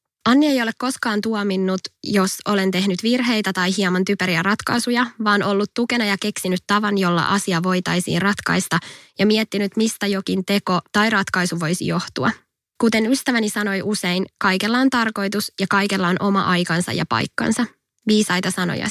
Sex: female